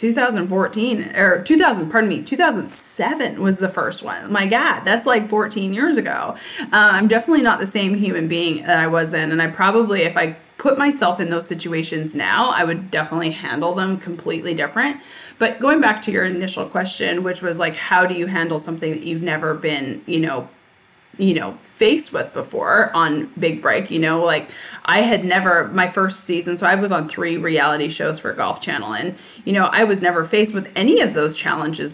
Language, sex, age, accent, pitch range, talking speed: English, female, 20-39, American, 165-210 Hz, 200 wpm